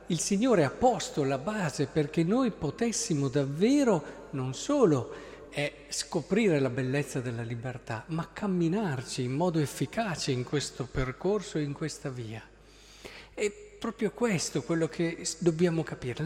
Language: Italian